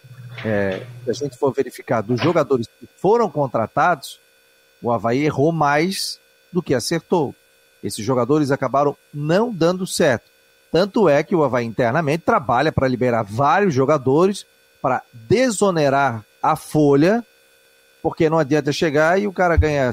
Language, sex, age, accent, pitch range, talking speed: Portuguese, male, 40-59, Brazilian, 110-160 Hz, 140 wpm